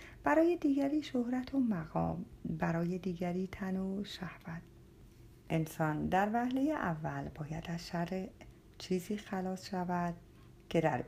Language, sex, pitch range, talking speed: Persian, female, 170-230 Hz, 120 wpm